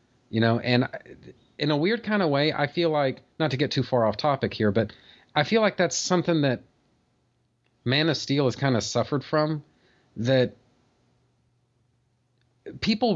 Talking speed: 170 wpm